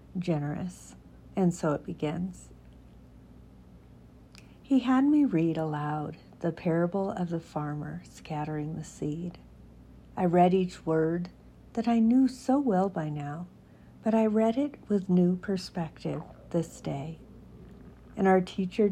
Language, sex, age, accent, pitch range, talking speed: English, female, 50-69, American, 150-190 Hz, 130 wpm